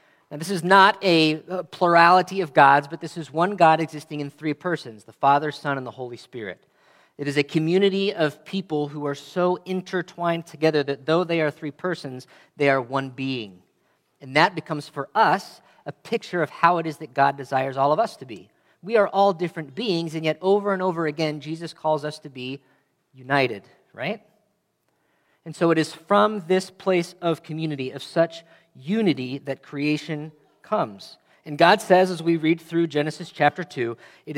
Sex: male